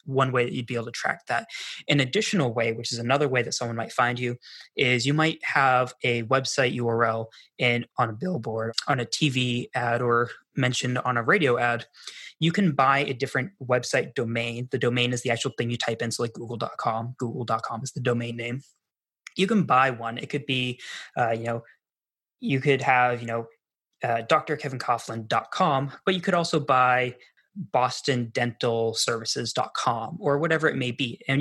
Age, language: 20-39, English